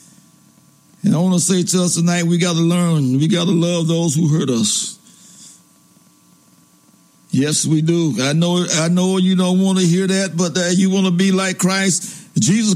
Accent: American